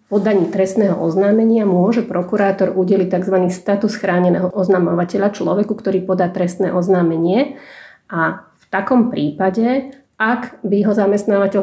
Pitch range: 180-200 Hz